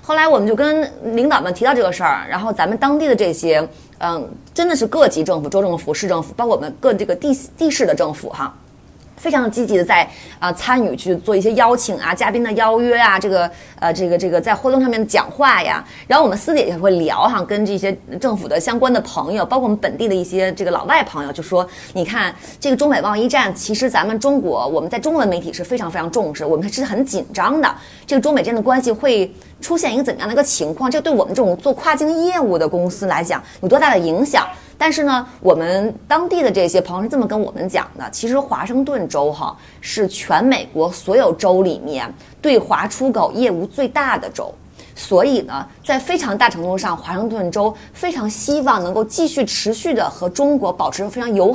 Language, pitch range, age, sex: Chinese, 185-270 Hz, 20-39, female